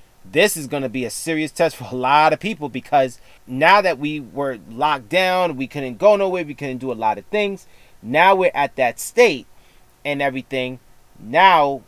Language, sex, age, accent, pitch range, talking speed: English, male, 30-49, American, 125-165 Hz, 190 wpm